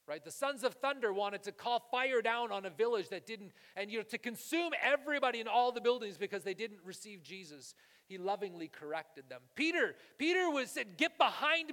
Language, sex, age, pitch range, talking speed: English, male, 40-59, 160-260 Hz, 205 wpm